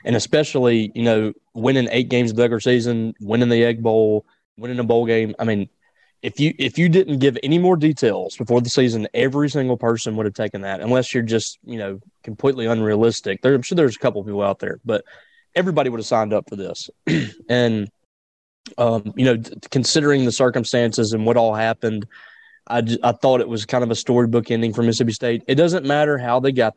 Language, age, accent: English, 20-39, American